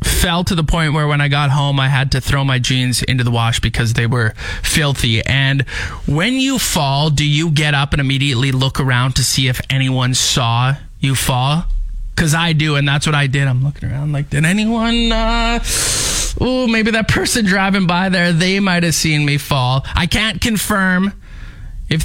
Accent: American